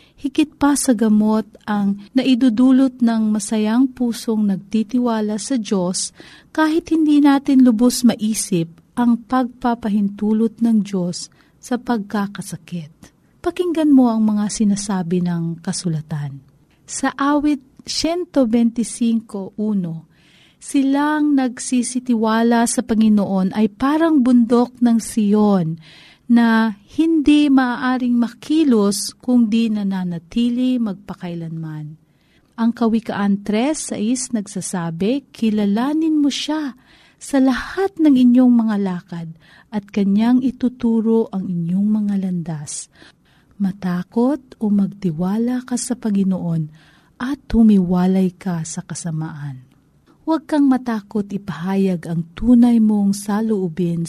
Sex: female